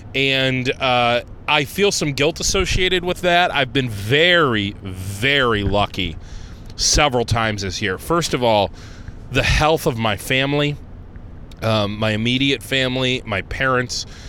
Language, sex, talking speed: English, male, 135 wpm